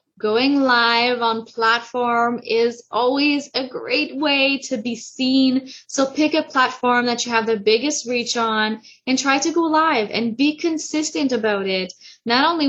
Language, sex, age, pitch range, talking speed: English, female, 10-29, 225-280 Hz, 165 wpm